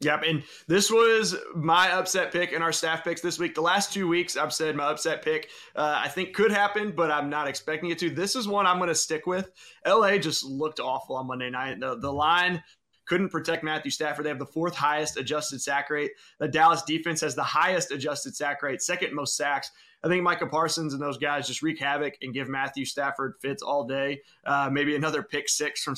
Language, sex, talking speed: English, male, 220 wpm